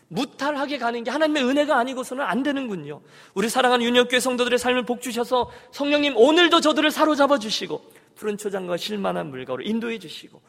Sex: male